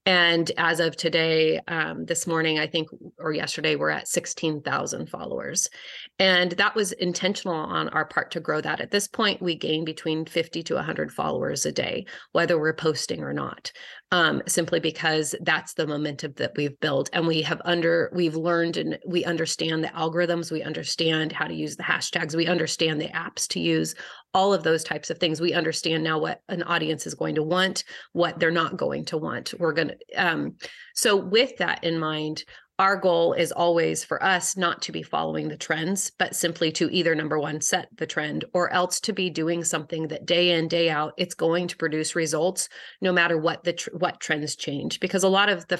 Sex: female